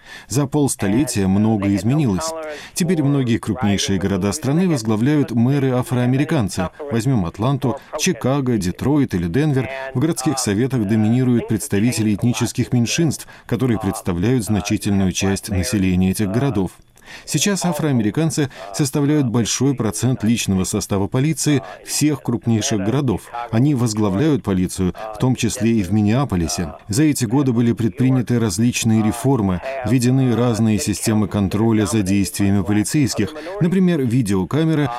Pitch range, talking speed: 105-135 Hz, 115 wpm